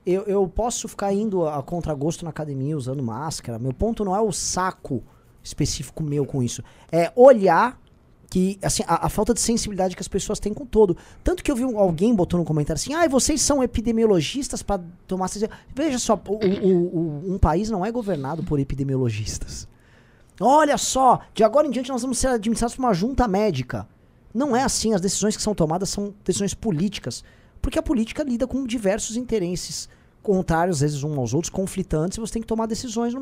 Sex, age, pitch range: male, 20-39, 155-235 Hz